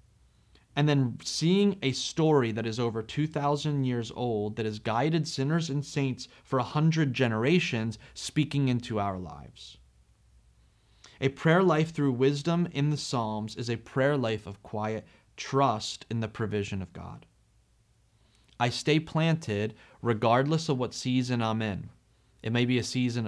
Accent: American